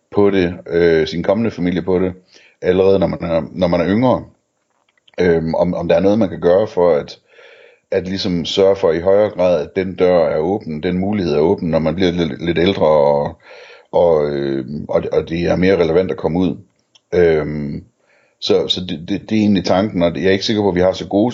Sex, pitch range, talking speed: male, 80-100 Hz, 225 wpm